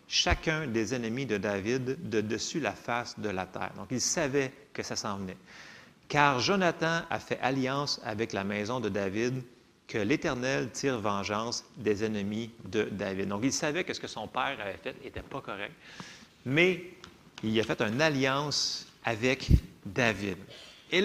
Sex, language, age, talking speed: male, French, 30-49, 180 wpm